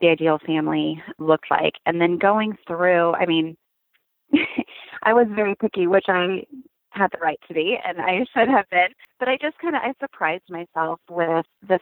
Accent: American